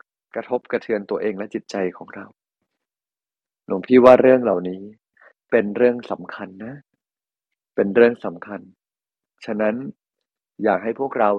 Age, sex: 20-39, male